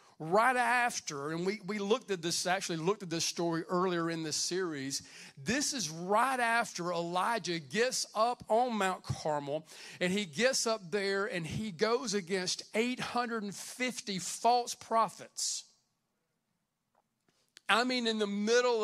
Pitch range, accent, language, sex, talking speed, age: 180-235 Hz, American, English, male, 140 wpm, 40-59